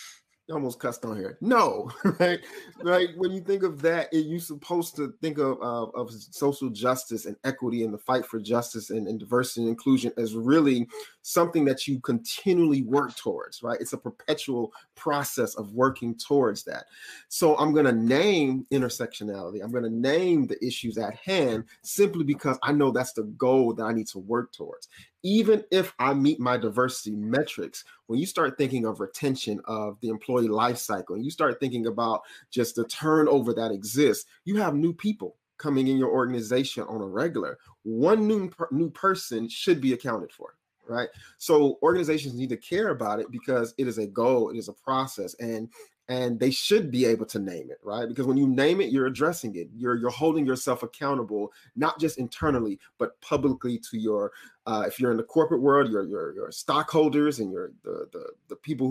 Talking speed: 190 wpm